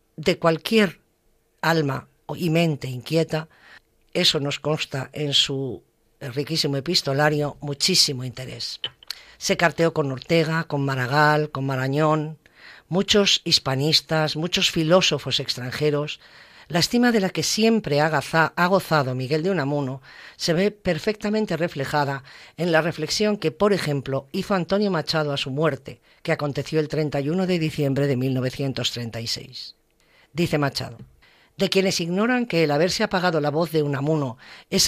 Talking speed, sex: 135 wpm, female